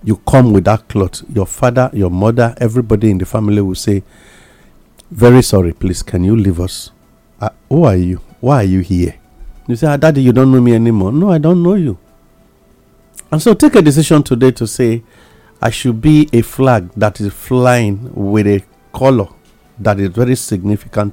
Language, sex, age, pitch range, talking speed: English, male, 50-69, 100-130 Hz, 190 wpm